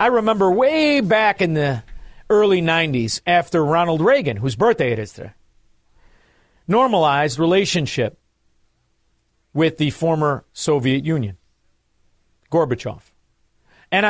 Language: English